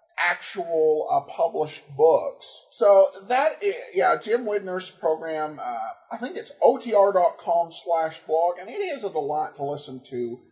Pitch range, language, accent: 155-260 Hz, English, American